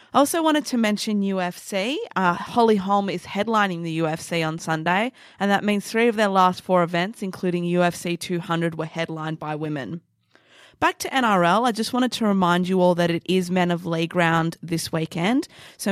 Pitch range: 160-185 Hz